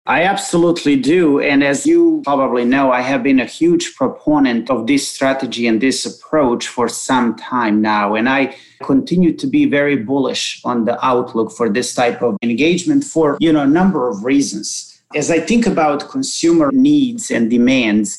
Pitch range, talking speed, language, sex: 130-185 Hz, 180 wpm, English, male